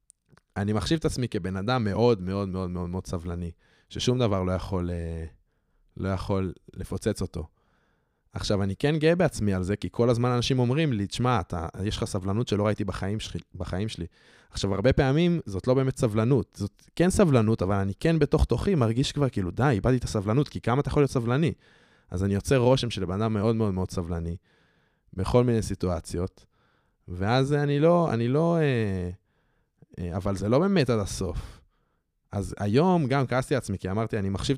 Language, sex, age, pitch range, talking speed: Hebrew, male, 20-39, 90-125 Hz, 180 wpm